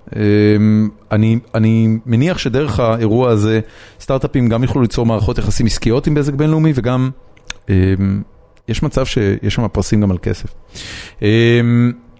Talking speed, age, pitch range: 140 wpm, 30-49, 100-120 Hz